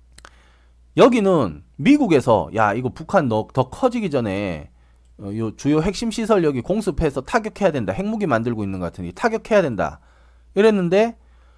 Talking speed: 130 wpm